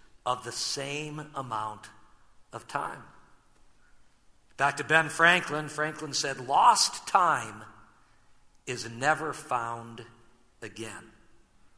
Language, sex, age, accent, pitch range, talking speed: English, male, 50-69, American, 115-185 Hz, 90 wpm